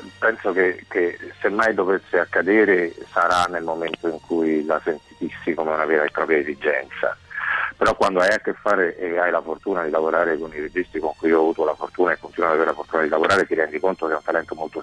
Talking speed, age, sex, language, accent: 230 wpm, 50-69, male, Italian, native